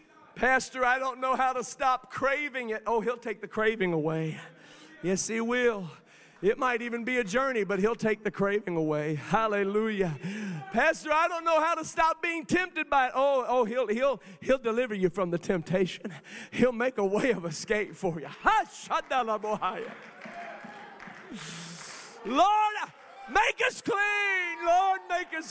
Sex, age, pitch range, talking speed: male, 40-59, 190-270 Hz, 160 wpm